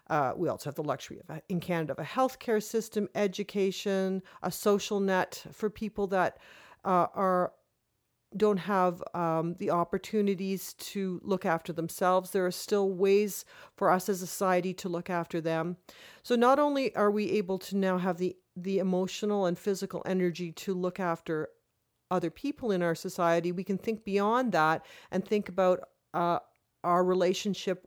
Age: 40-59